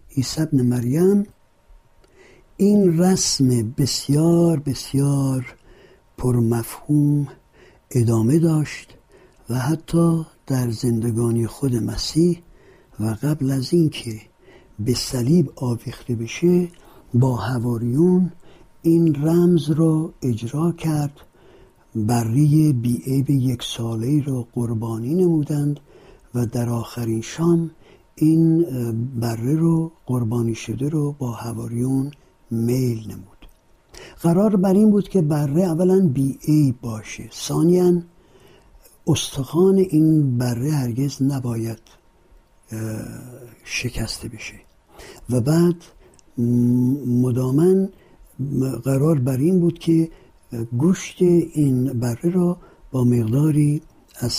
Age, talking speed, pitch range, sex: 60-79, 95 wpm, 120-165 Hz, male